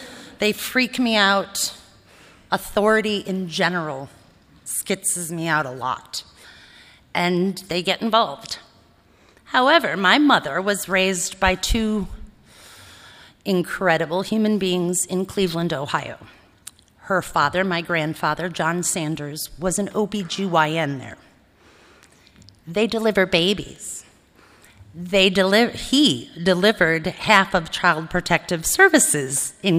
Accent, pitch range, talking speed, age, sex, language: American, 165-210 Hz, 105 wpm, 30-49, female, English